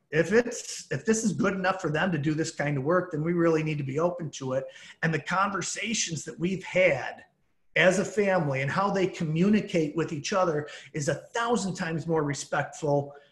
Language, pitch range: English, 145-185 Hz